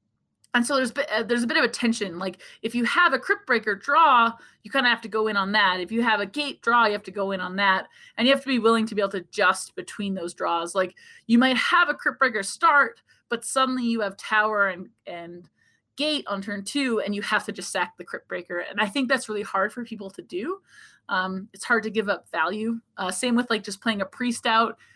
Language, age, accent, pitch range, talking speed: English, 20-39, American, 195-255 Hz, 255 wpm